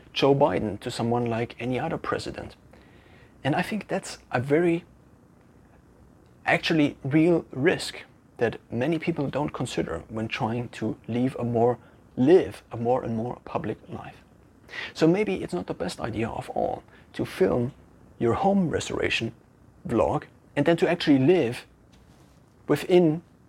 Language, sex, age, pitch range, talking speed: English, male, 30-49, 120-165 Hz, 135 wpm